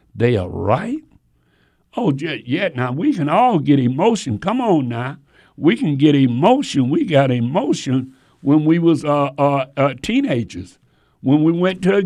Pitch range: 130-190 Hz